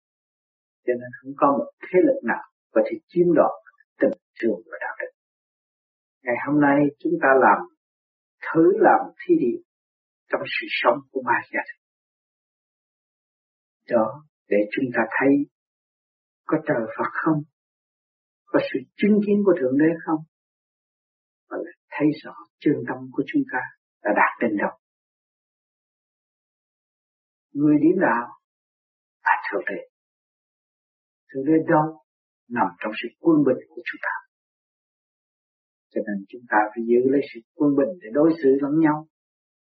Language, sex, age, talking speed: Vietnamese, male, 60-79, 140 wpm